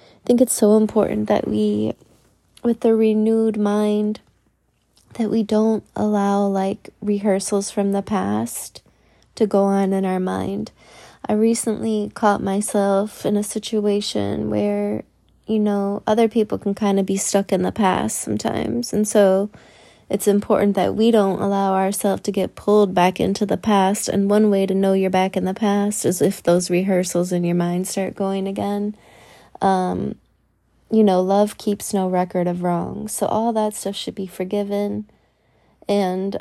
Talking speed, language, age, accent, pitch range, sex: 165 wpm, English, 20-39, American, 190-210 Hz, female